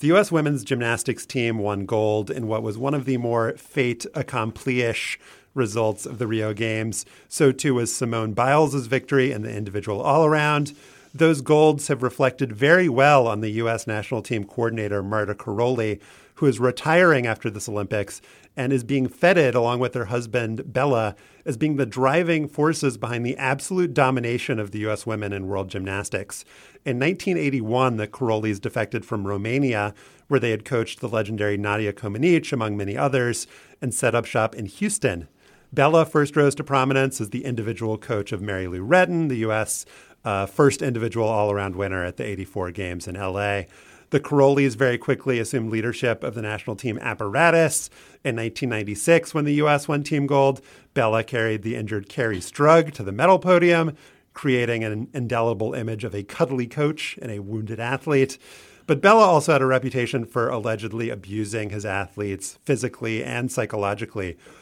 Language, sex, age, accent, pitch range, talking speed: English, male, 40-59, American, 110-135 Hz, 170 wpm